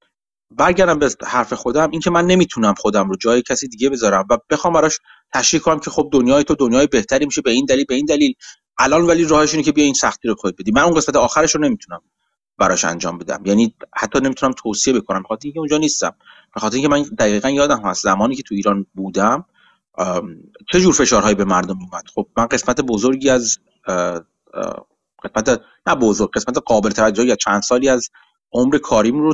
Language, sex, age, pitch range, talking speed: Persian, male, 30-49, 105-155 Hz, 195 wpm